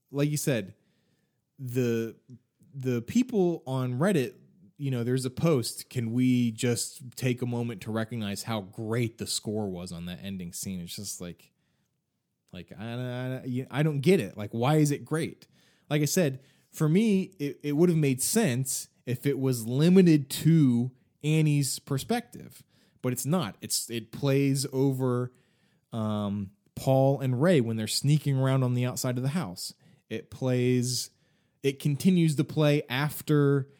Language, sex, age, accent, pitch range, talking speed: English, male, 20-39, American, 115-150 Hz, 160 wpm